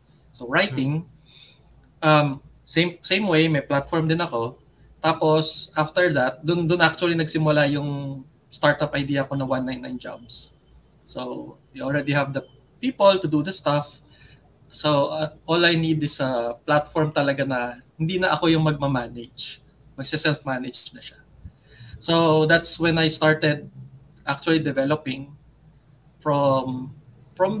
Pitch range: 135-160 Hz